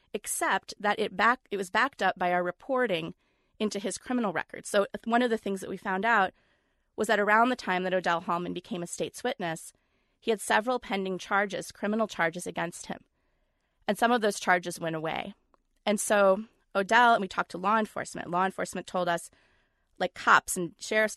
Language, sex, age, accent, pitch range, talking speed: English, female, 30-49, American, 175-210 Hz, 195 wpm